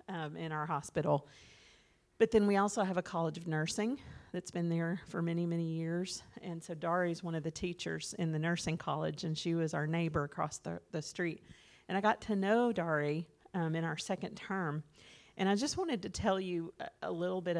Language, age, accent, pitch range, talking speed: English, 40-59, American, 155-180 Hz, 210 wpm